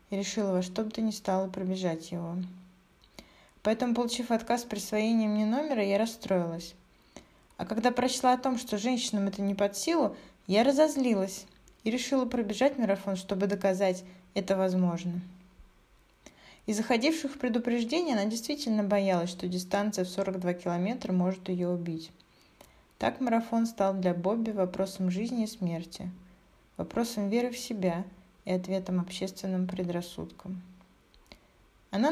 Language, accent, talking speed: Russian, native, 135 wpm